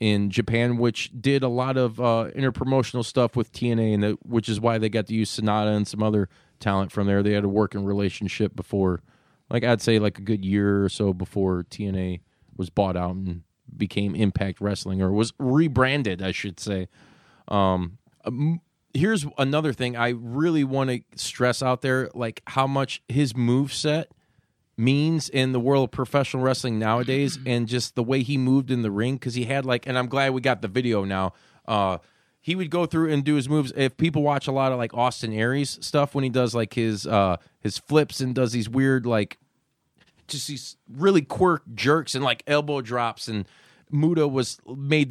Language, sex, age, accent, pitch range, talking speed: English, male, 30-49, American, 105-135 Hz, 195 wpm